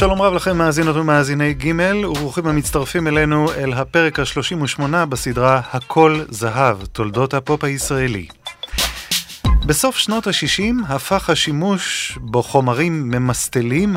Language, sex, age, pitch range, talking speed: Hebrew, male, 30-49, 120-165 Hz, 110 wpm